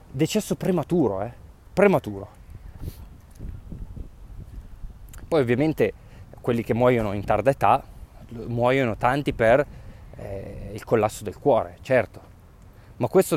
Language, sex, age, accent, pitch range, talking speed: Italian, male, 20-39, native, 100-150 Hz, 105 wpm